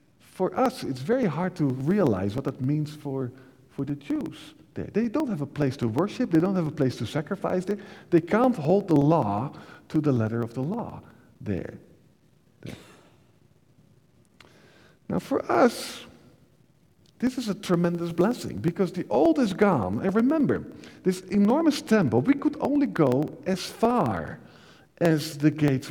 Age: 50-69